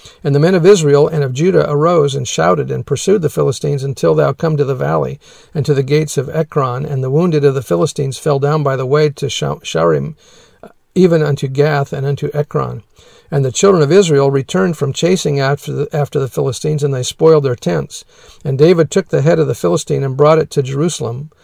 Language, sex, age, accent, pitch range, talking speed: English, male, 50-69, American, 140-160 Hz, 210 wpm